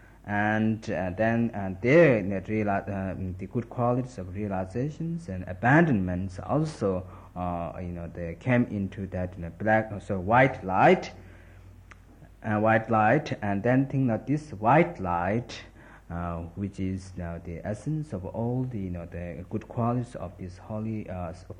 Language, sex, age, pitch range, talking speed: Italian, male, 50-69, 90-115 Hz, 175 wpm